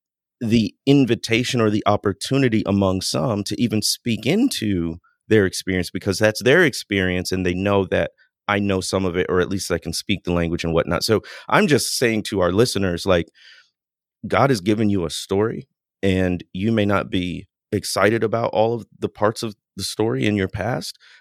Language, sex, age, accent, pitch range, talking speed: English, male, 30-49, American, 95-120 Hz, 190 wpm